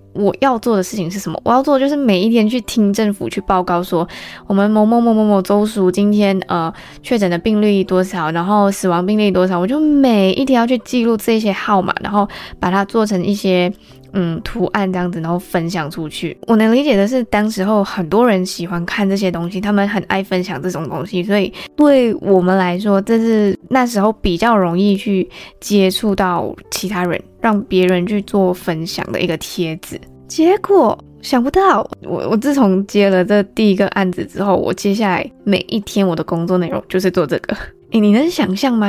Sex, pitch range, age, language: female, 185-225 Hz, 20-39, Chinese